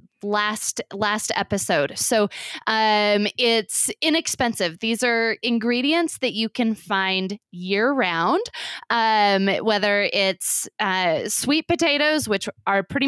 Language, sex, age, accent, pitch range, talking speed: English, female, 20-39, American, 200-270 Hz, 115 wpm